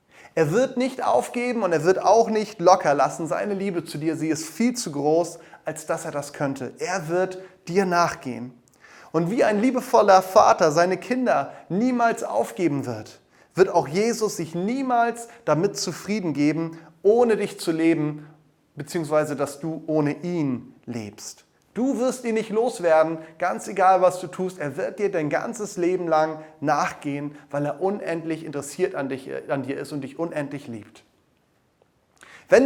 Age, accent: 30-49, German